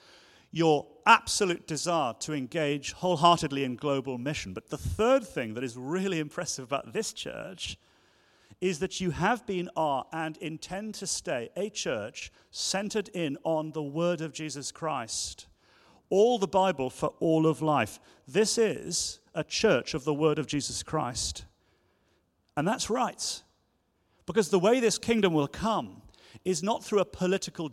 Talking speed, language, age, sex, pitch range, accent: 155 wpm, English, 40-59, male, 105-180 Hz, British